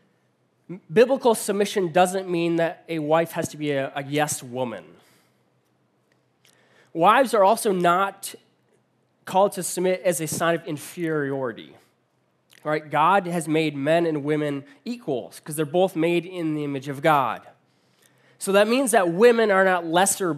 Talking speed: 145 wpm